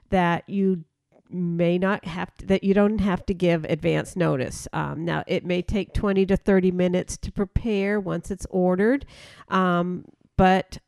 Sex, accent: female, American